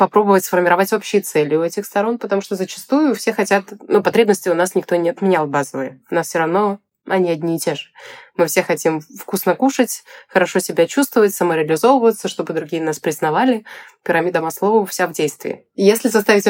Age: 20-39